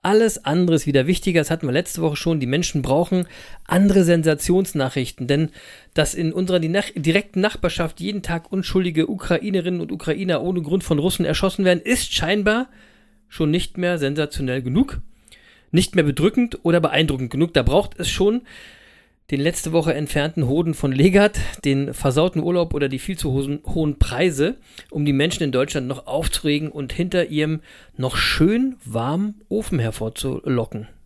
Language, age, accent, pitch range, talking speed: German, 40-59, German, 140-190 Hz, 160 wpm